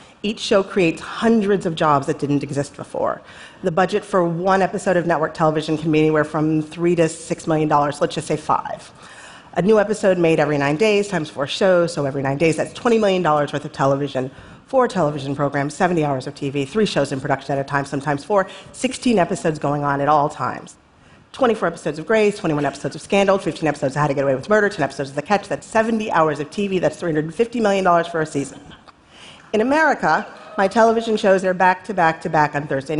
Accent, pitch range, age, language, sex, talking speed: American, 150-195 Hz, 40-59, Russian, female, 215 wpm